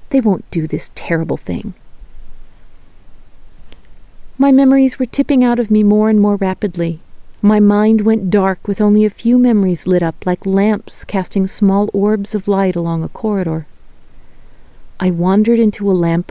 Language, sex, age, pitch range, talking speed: English, female, 40-59, 180-230 Hz, 160 wpm